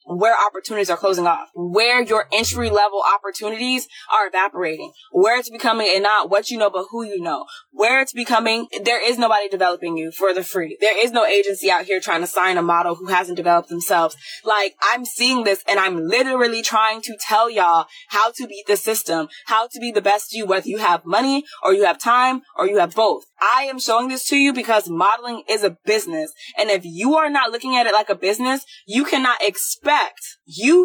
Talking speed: 215 wpm